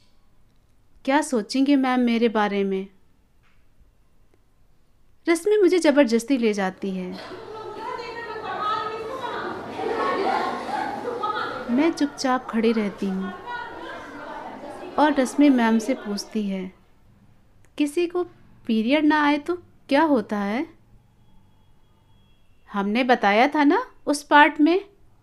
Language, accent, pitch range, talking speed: Hindi, native, 195-300 Hz, 95 wpm